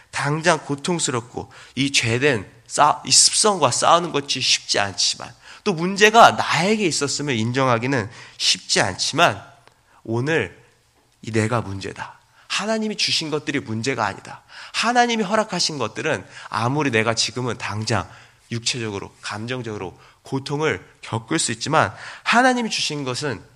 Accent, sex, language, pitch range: native, male, Korean, 110-150 Hz